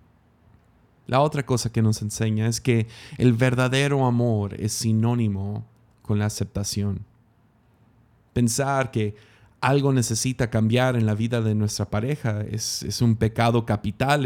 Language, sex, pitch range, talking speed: Spanish, male, 110-130 Hz, 135 wpm